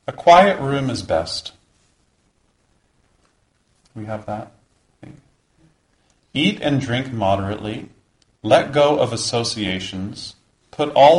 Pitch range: 90-125 Hz